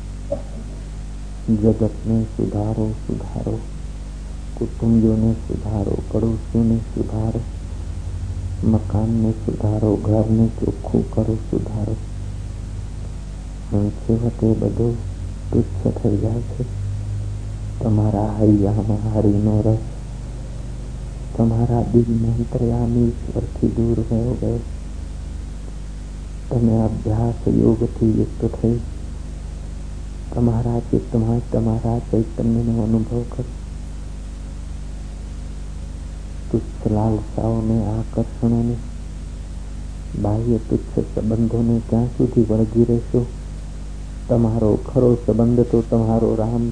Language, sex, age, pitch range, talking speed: Hindi, male, 50-69, 85-115 Hz, 90 wpm